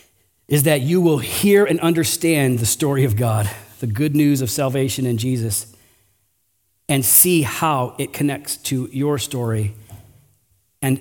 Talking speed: 145 wpm